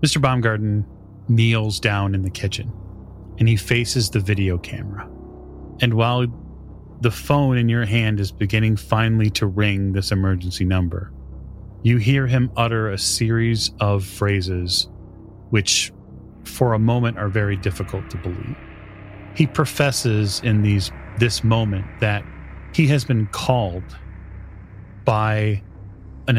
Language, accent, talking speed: English, American, 130 wpm